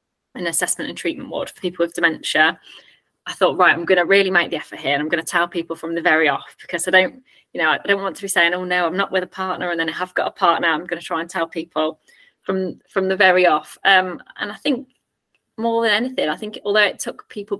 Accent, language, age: British, English, 20-39